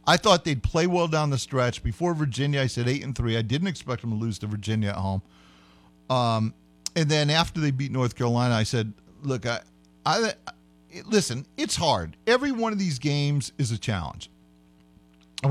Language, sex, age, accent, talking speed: English, male, 40-59, American, 195 wpm